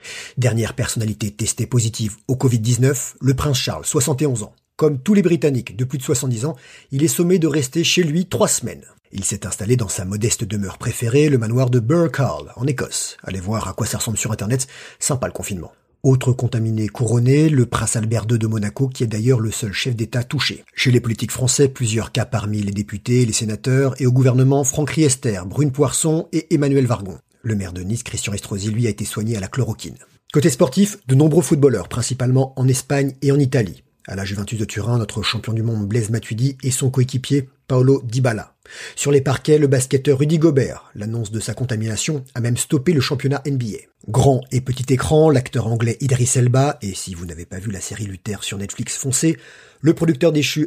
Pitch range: 110-145 Hz